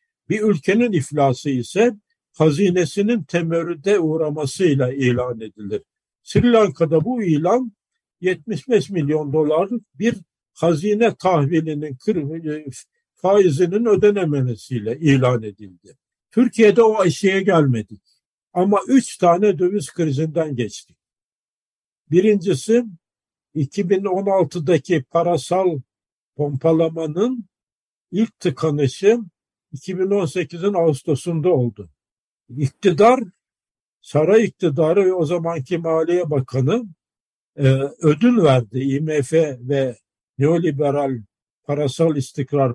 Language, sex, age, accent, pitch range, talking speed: Turkish, male, 60-79, native, 140-200 Hz, 80 wpm